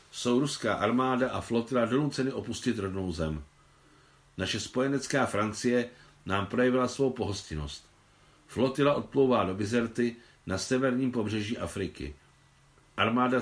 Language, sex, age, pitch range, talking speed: Czech, male, 50-69, 90-120 Hz, 110 wpm